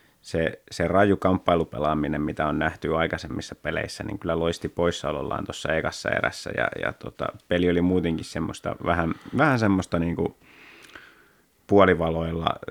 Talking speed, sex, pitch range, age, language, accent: 130 wpm, male, 85-100 Hz, 30-49, Finnish, native